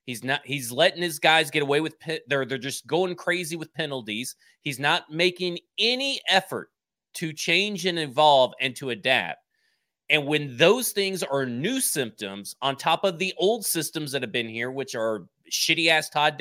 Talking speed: 185 wpm